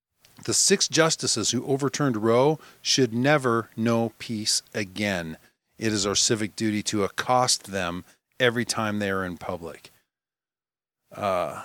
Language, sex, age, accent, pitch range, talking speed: English, male, 40-59, American, 110-145 Hz, 135 wpm